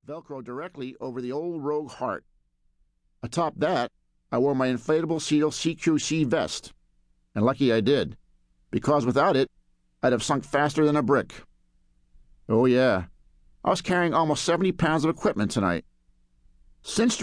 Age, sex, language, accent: 50-69, male, English, American